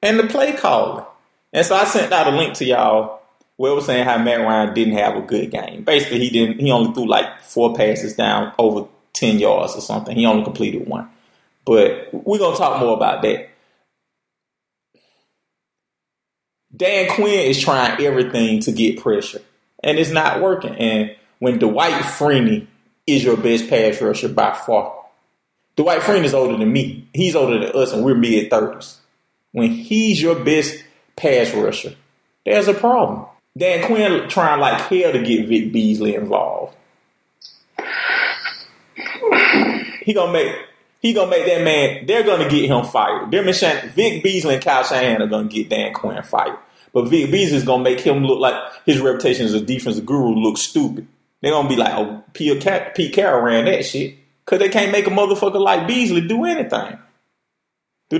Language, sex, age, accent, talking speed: English, male, 20-39, American, 180 wpm